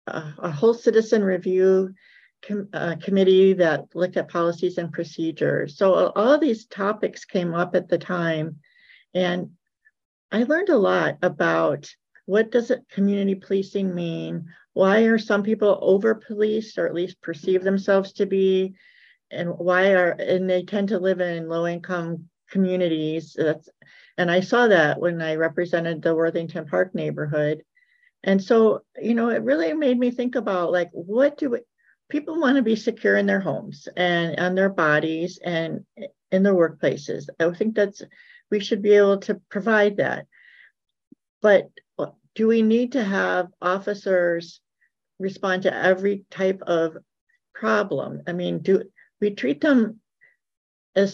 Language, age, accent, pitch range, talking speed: English, 50-69, American, 170-215 Hz, 155 wpm